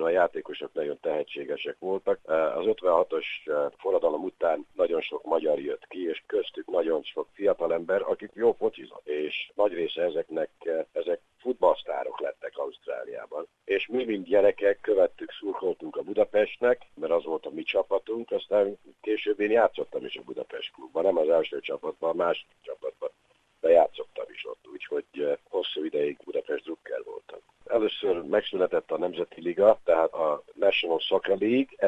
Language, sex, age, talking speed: Hungarian, male, 60-79, 150 wpm